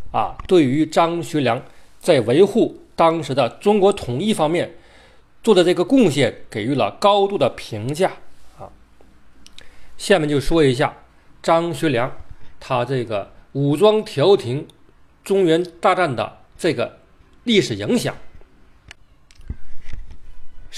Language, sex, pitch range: Chinese, male, 115-170 Hz